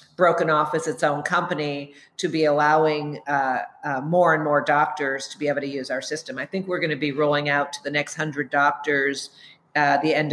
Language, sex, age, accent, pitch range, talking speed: English, female, 50-69, American, 145-170 Hz, 220 wpm